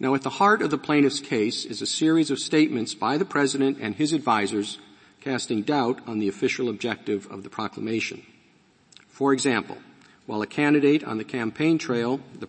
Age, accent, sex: 50-69, American, male